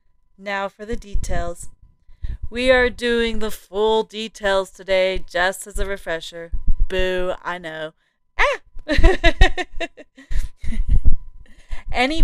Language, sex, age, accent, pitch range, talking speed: English, female, 30-49, American, 185-240 Hz, 100 wpm